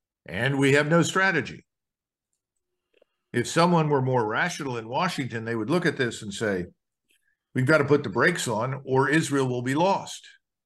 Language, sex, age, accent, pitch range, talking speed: English, male, 50-69, American, 125-155 Hz, 175 wpm